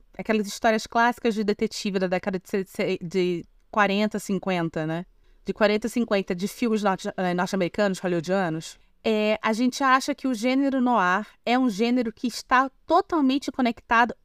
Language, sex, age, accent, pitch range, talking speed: Portuguese, female, 20-39, Brazilian, 195-260 Hz, 135 wpm